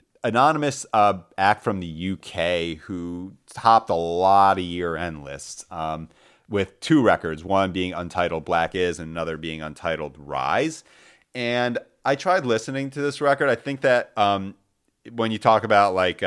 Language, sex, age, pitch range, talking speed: English, male, 30-49, 85-110 Hz, 160 wpm